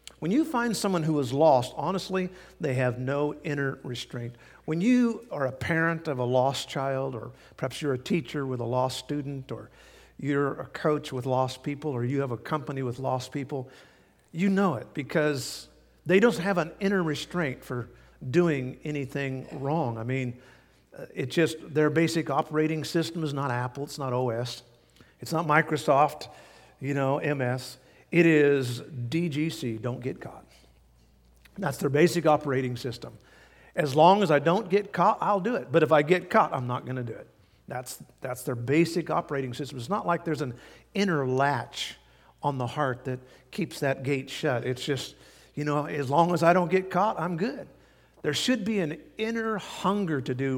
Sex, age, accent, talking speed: male, 50-69, American, 185 wpm